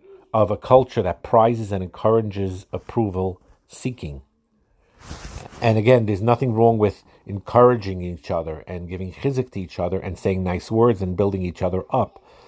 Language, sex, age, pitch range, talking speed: English, male, 50-69, 90-110 Hz, 155 wpm